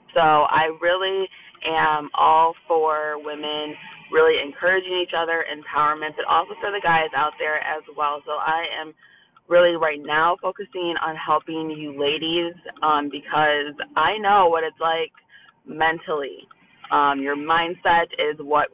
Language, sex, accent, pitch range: English, female, American, 150-180 Hz